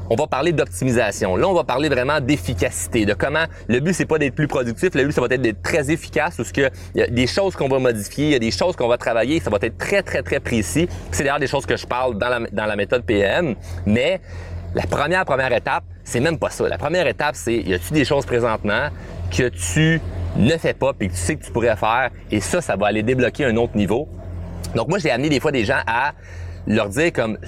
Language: French